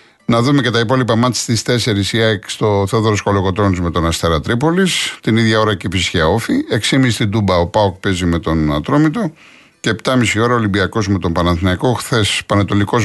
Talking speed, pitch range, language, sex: 190 wpm, 95-120 Hz, Greek, male